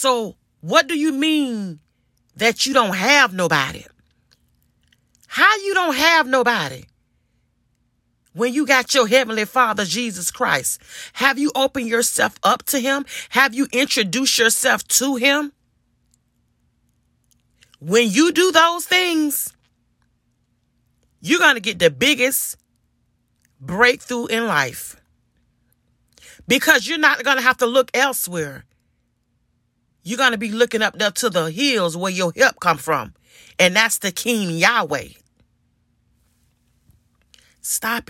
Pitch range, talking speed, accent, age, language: 220-275 Hz, 125 wpm, American, 40-59, English